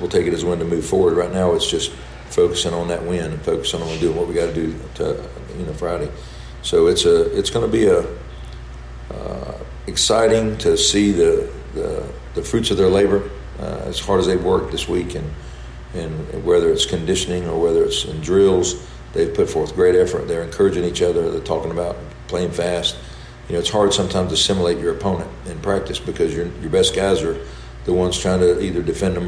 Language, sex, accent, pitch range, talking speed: English, male, American, 80-110 Hz, 215 wpm